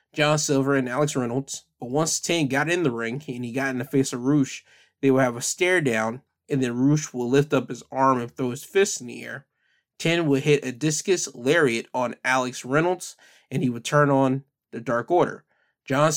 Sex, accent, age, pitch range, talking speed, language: male, American, 20-39, 125-150 Hz, 220 wpm, English